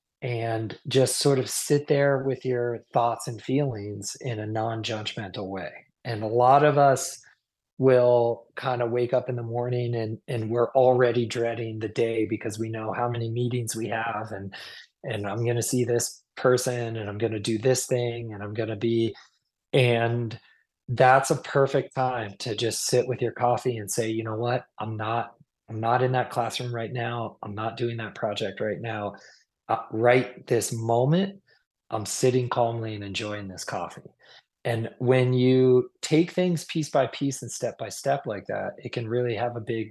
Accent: American